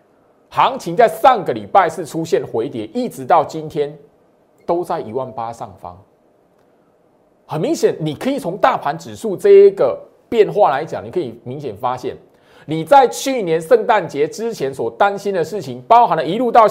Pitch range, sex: 150-245 Hz, male